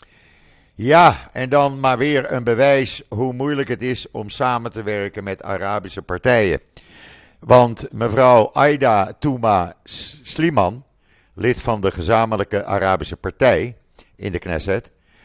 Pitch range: 95-125 Hz